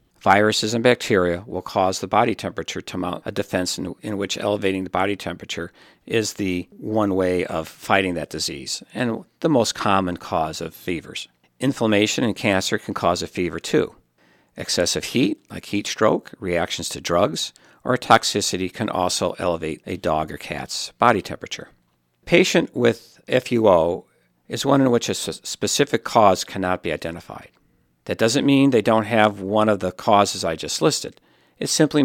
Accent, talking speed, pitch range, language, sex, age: American, 165 wpm, 90-110 Hz, English, male, 50-69